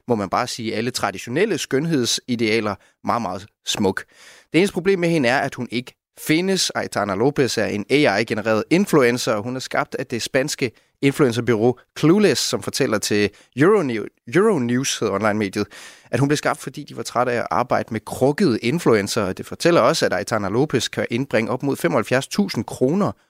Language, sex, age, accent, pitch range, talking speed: Danish, male, 30-49, native, 110-130 Hz, 175 wpm